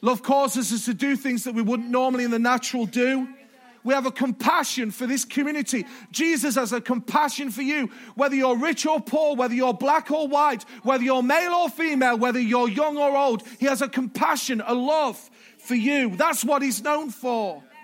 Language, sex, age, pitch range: English, male, 40-59, 250-300 Hz